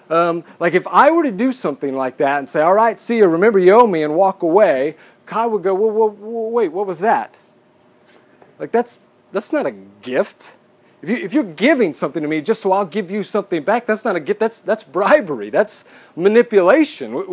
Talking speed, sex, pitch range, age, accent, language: 220 wpm, male, 150-205 Hz, 40-59, American, English